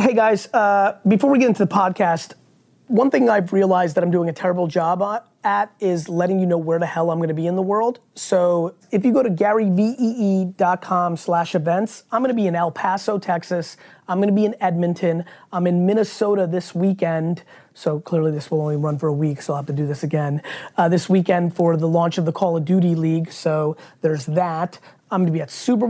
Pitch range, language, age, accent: 170-205 Hz, English, 30-49, American